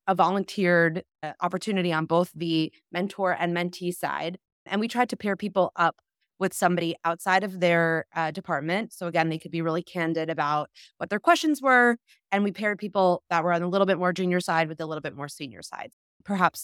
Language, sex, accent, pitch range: English, female, American, 165-200 Hz